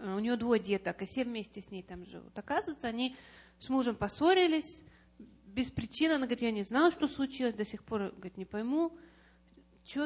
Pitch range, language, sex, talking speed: 200-255 Hz, Russian, female, 185 wpm